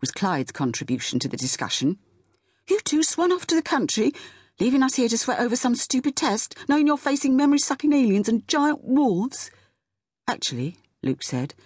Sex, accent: female, British